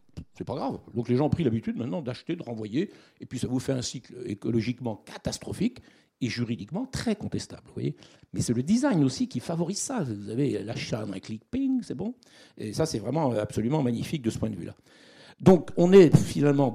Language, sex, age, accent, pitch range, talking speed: French, male, 60-79, French, 115-160 Hz, 210 wpm